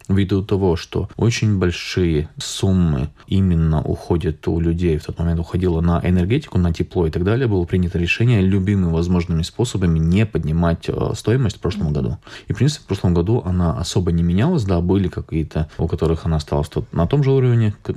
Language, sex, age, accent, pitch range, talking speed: Russian, male, 20-39, native, 85-100 Hz, 180 wpm